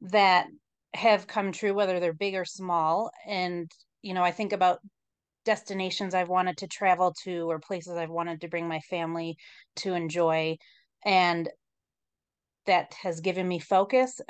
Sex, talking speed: female, 155 wpm